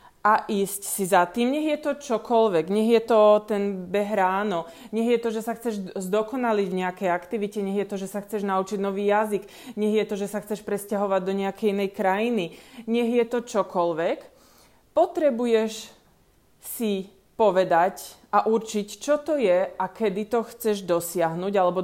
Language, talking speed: Slovak, 170 wpm